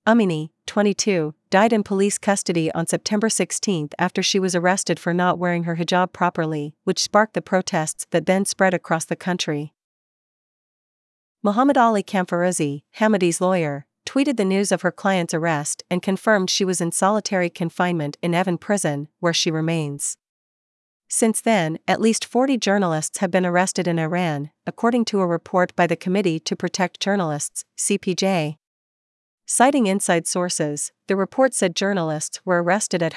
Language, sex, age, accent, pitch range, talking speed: English, female, 40-59, American, 170-200 Hz, 155 wpm